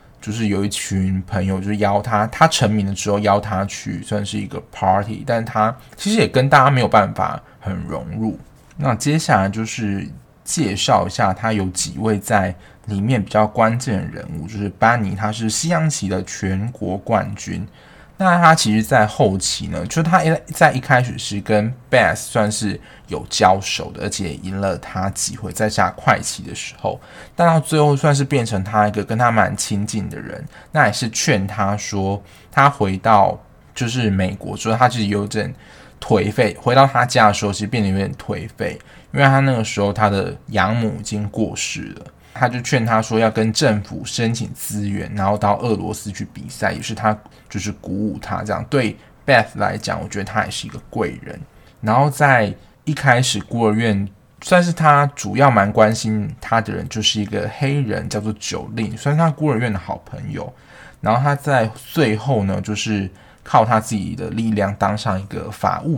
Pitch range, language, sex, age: 100-125 Hz, Chinese, male, 20-39